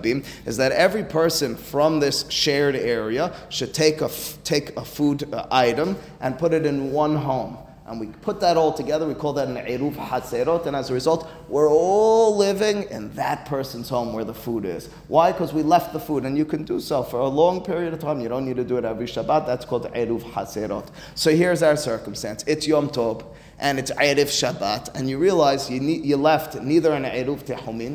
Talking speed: 215 wpm